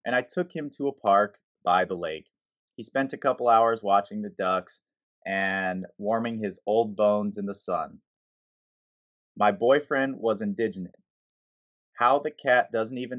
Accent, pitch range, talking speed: American, 95-115 Hz, 160 wpm